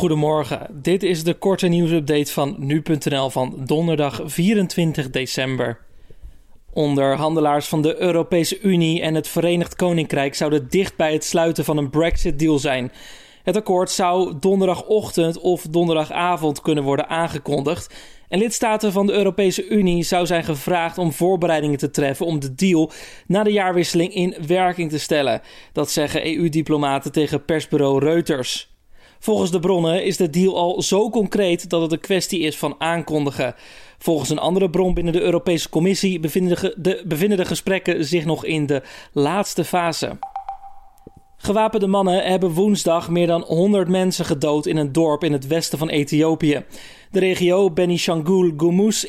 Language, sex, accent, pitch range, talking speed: Dutch, male, Dutch, 155-185 Hz, 150 wpm